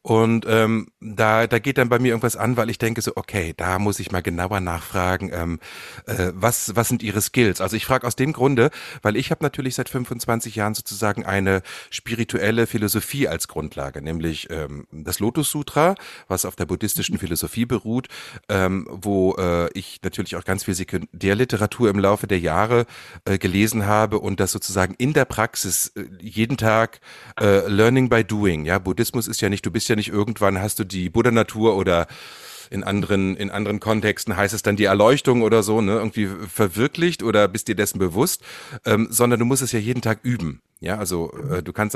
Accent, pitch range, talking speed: German, 95-115 Hz, 195 wpm